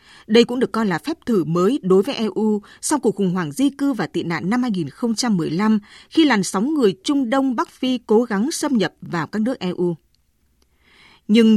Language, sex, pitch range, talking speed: Vietnamese, female, 190-260 Hz, 200 wpm